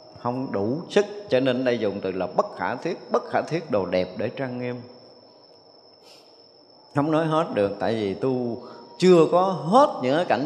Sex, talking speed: male, 185 wpm